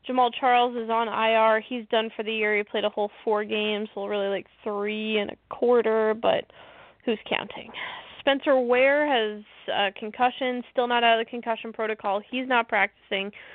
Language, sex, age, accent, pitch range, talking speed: English, female, 20-39, American, 205-245 Hz, 185 wpm